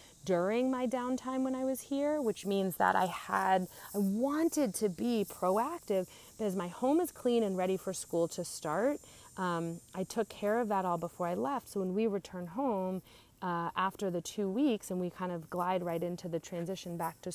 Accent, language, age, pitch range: American, English, 30-49, 175-210 Hz